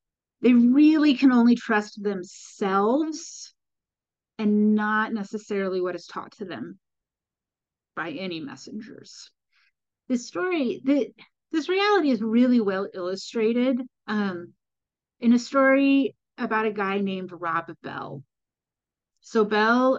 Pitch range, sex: 195-255 Hz, female